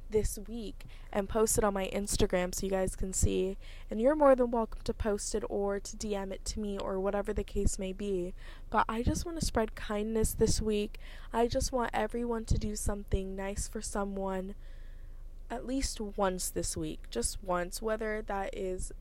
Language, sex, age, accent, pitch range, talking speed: English, female, 20-39, American, 190-220 Hz, 195 wpm